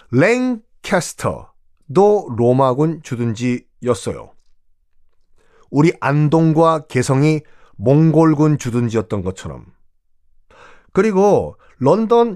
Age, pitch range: 30-49, 105-175 Hz